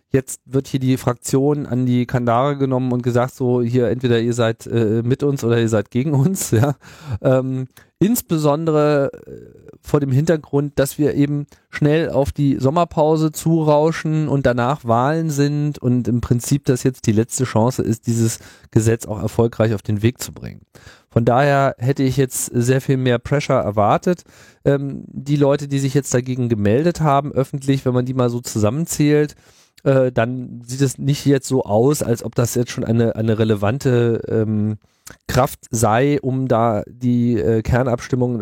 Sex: male